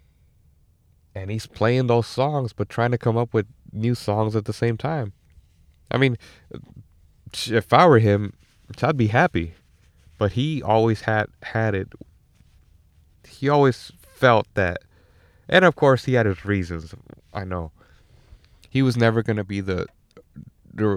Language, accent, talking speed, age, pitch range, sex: English, American, 150 wpm, 30-49, 85-110 Hz, male